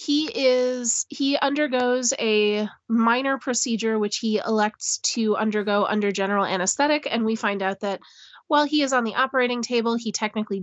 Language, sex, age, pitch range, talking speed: English, female, 20-39, 215-250 Hz, 165 wpm